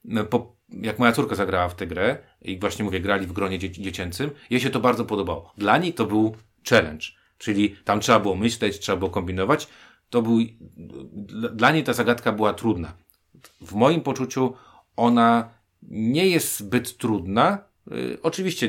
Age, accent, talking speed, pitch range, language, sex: 40-59, native, 155 wpm, 90-120 Hz, Polish, male